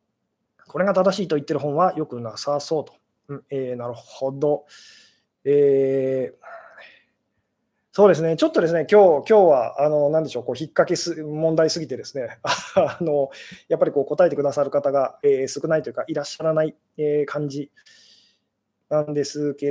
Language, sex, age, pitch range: Japanese, male, 20-39, 150-200 Hz